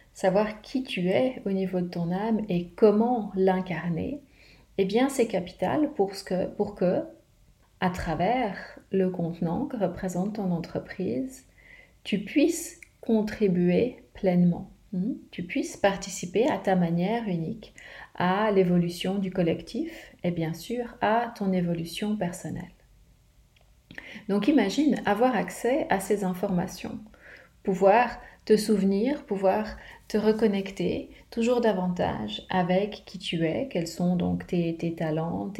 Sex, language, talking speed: female, French, 130 wpm